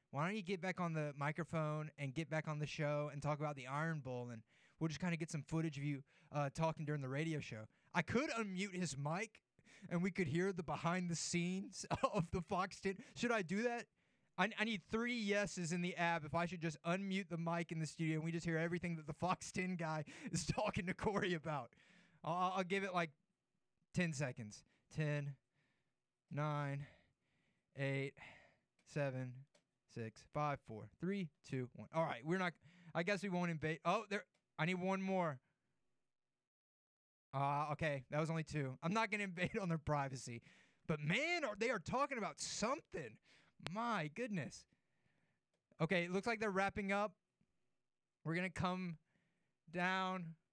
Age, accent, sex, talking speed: 20-39, American, male, 190 wpm